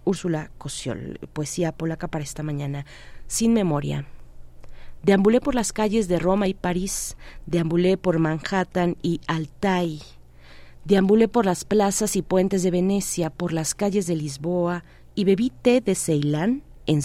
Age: 30-49